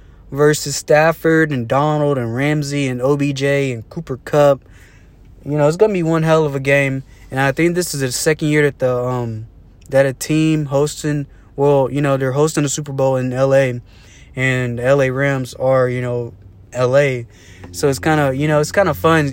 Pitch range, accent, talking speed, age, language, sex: 125-150 Hz, American, 195 wpm, 20-39, English, male